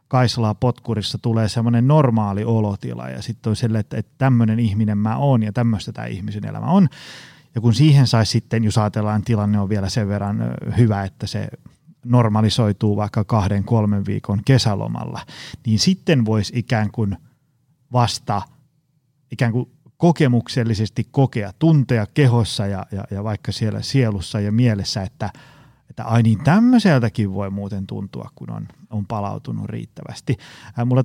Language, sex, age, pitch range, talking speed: Finnish, male, 30-49, 110-135 Hz, 145 wpm